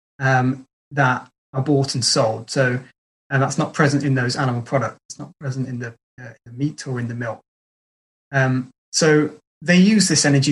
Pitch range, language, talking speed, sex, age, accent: 130-150 Hz, English, 200 wpm, male, 20-39, British